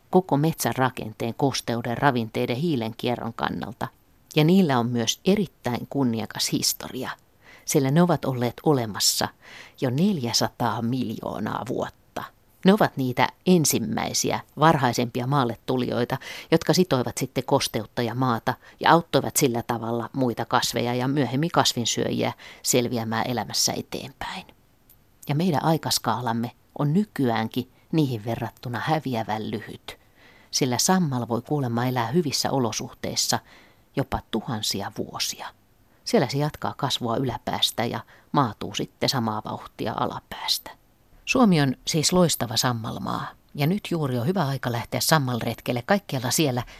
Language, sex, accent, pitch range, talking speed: Finnish, female, native, 115-145 Hz, 120 wpm